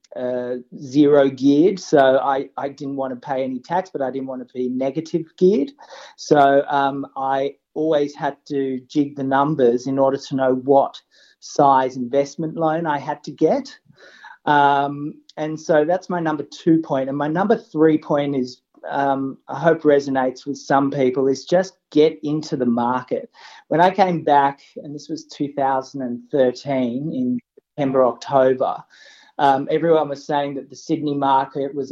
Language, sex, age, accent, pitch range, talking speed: English, male, 30-49, Australian, 135-155 Hz, 165 wpm